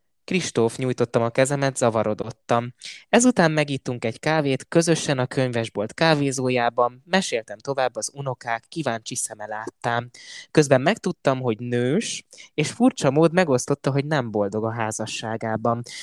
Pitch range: 115-150 Hz